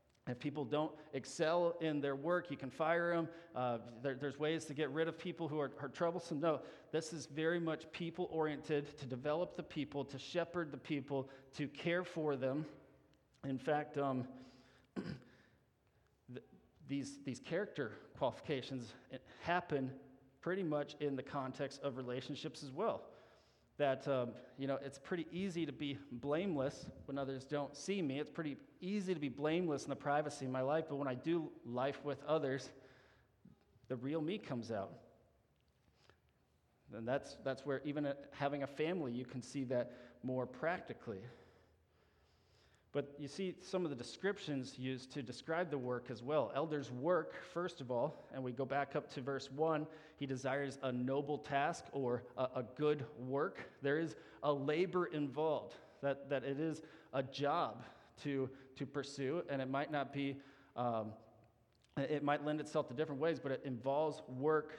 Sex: male